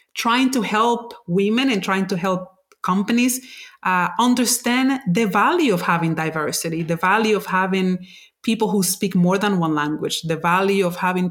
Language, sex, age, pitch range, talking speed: English, female, 30-49, 185-240 Hz, 165 wpm